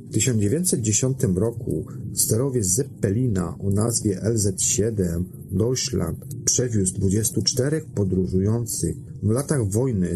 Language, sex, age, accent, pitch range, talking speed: Polish, male, 40-59, native, 100-130 Hz, 90 wpm